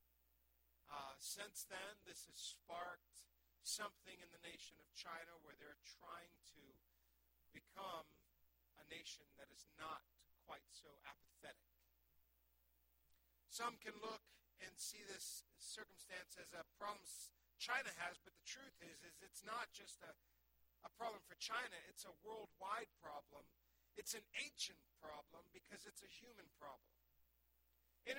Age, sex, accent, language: 50-69, male, American, English